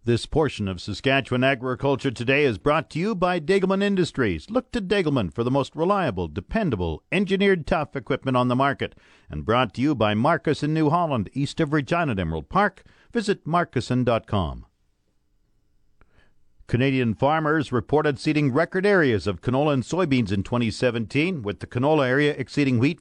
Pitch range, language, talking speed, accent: 110-145 Hz, English, 165 wpm, American